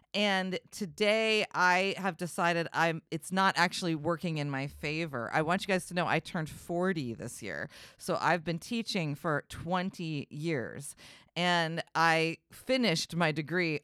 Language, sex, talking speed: English, female, 155 wpm